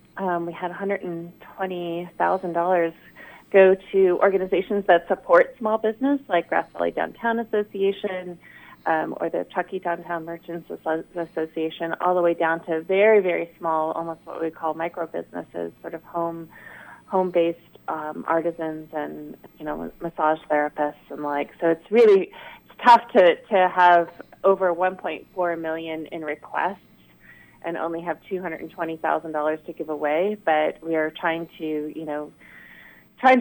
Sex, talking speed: female, 135 wpm